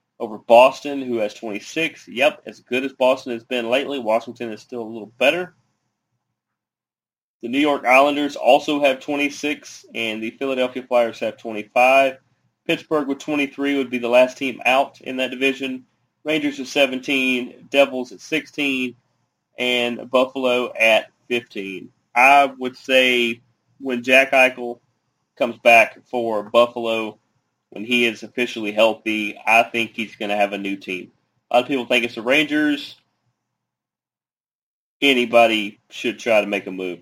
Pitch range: 115-140 Hz